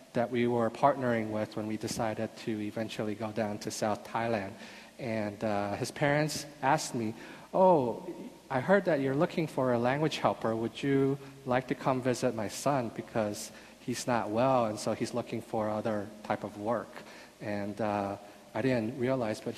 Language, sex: Korean, male